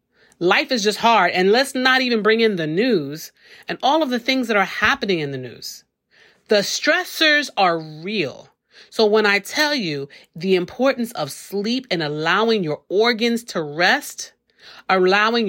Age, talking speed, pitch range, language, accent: 40-59, 165 wpm, 180-240 Hz, English, American